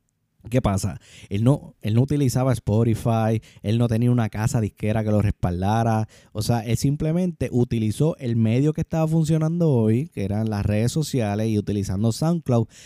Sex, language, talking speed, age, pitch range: male, Spanish, 170 wpm, 20-39, 115-150 Hz